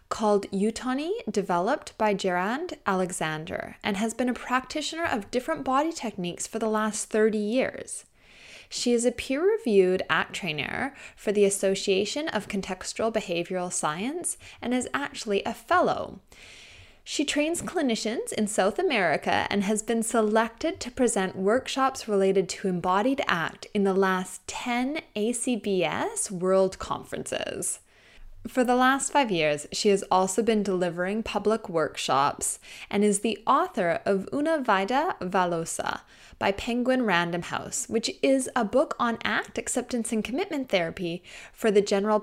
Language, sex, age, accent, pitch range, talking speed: English, female, 20-39, American, 190-250 Hz, 140 wpm